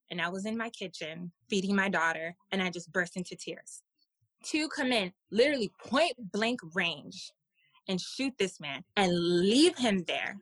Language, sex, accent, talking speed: English, female, American, 165 wpm